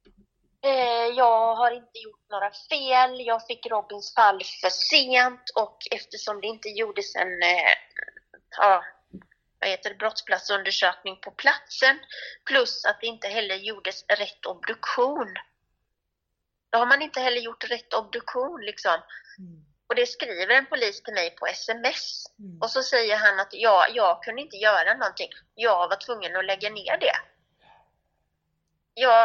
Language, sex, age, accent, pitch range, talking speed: English, female, 30-49, Swedish, 200-250 Hz, 130 wpm